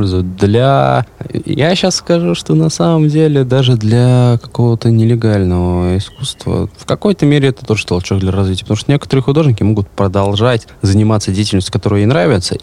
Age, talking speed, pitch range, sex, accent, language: 20-39, 150 wpm, 90-115 Hz, male, native, Russian